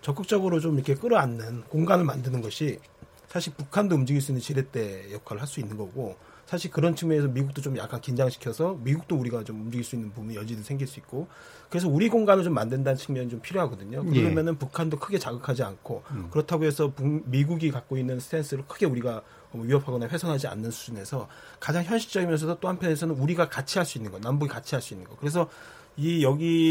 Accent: native